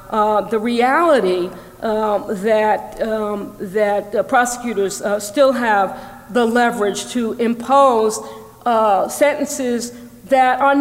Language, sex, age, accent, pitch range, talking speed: English, female, 50-69, American, 205-265 Hz, 110 wpm